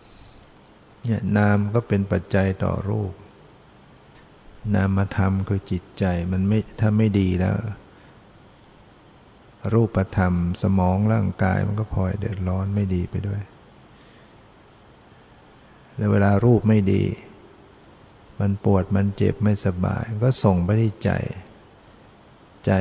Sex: male